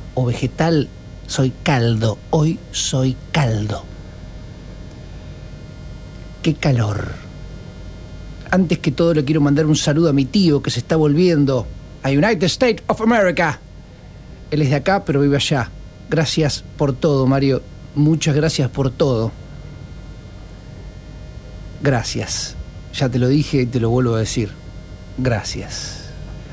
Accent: Argentinian